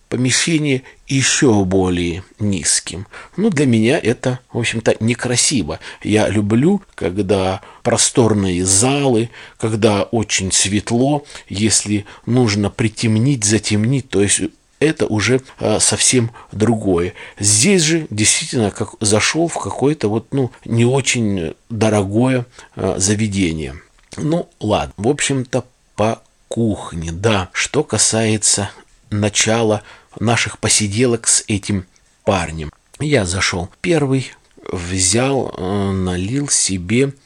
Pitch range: 95-125 Hz